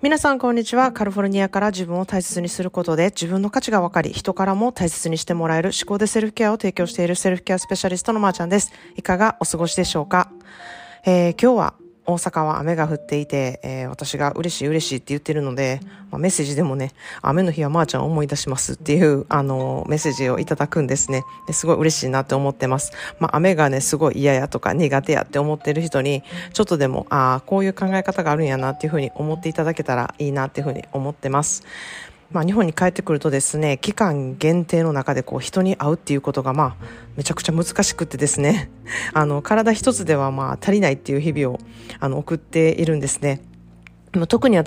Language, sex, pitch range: Japanese, female, 140-185 Hz